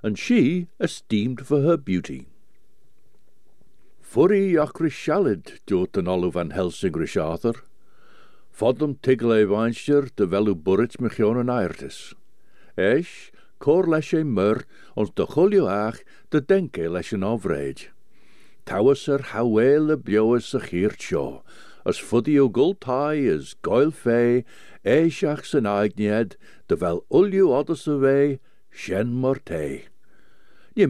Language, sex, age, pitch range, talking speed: English, male, 60-79, 105-150 Hz, 100 wpm